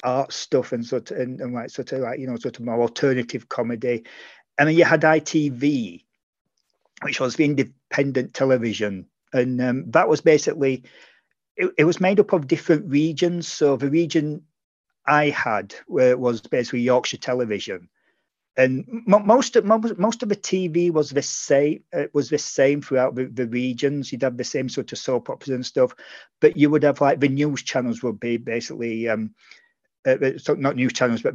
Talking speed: 195 wpm